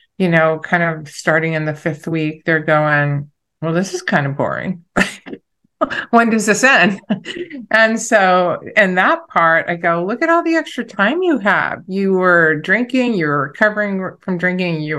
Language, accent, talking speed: English, American, 175 wpm